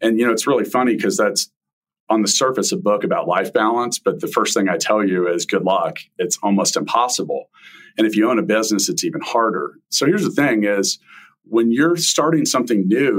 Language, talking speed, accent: English, 220 wpm, American